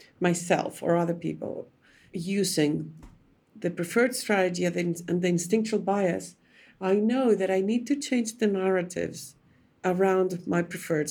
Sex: female